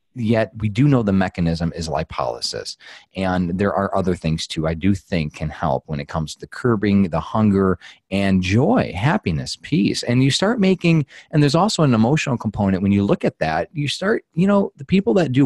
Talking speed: 205 wpm